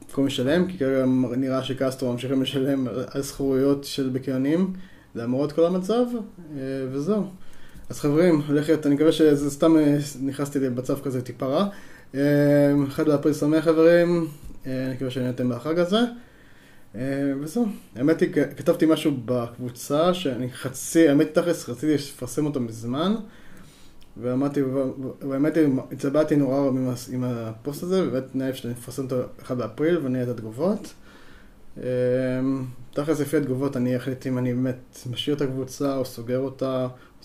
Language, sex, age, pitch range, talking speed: Hebrew, male, 20-39, 125-150 Hz, 135 wpm